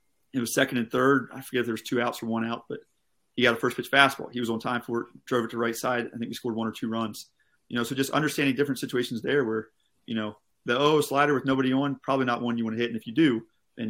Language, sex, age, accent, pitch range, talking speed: English, male, 30-49, American, 115-130 Hz, 300 wpm